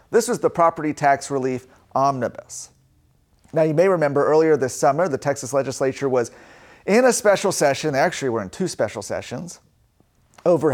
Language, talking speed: English, 170 wpm